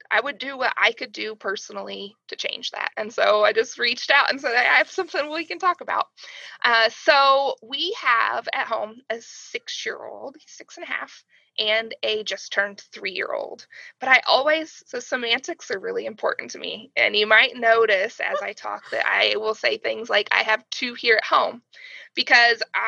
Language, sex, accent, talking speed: English, female, American, 190 wpm